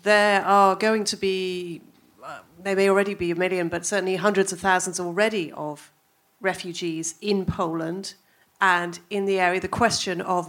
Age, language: 40-59, English